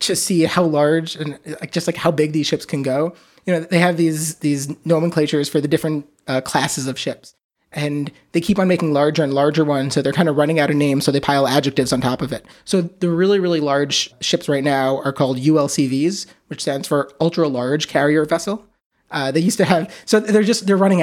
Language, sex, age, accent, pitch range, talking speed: English, male, 30-49, American, 135-170 Hz, 230 wpm